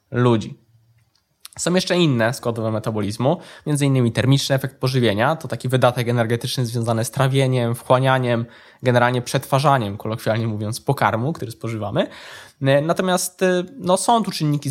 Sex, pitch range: male, 125-160 Hz